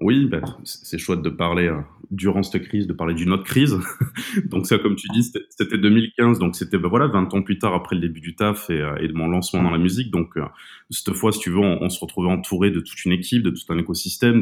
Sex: male